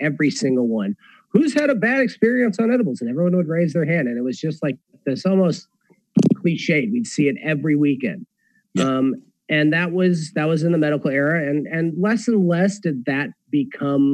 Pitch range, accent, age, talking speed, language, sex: 135-195 Hz, American, 30-49, 200 wpm, English, male